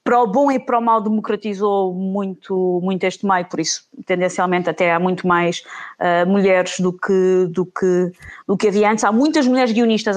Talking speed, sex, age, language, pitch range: 195 wpm, female, 20-39, Portuguese, 195-270 Hz